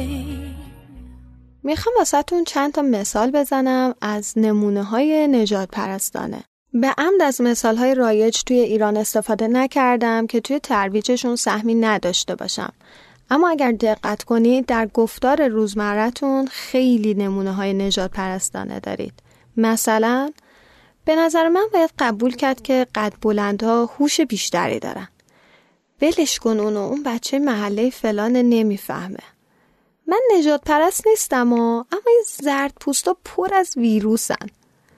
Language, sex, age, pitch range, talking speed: Persian, female, 10-29, 215-290 Hz, 120 wpm